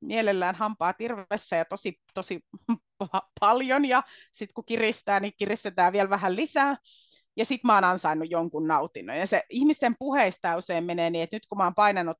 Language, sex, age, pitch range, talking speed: Finnish, female, 30-49, 165-210 Hz, 165 wpm